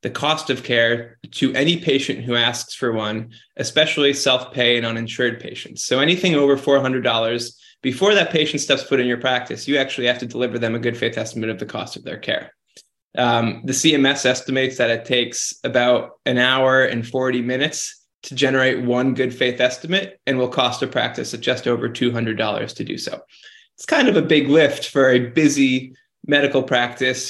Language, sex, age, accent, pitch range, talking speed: English, male, 20-39, American, 120-140 Hz, 190 wpm